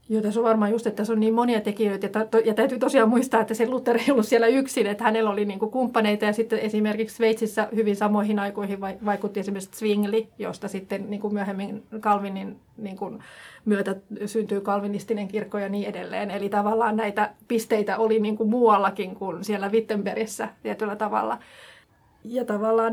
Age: 30-49